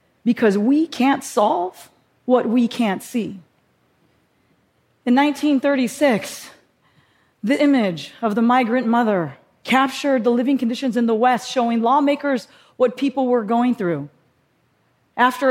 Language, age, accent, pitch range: English, 40-59, American, 210-255 Hz